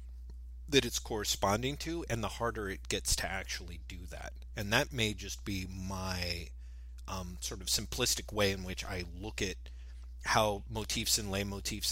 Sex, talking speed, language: male, 170 wpm, English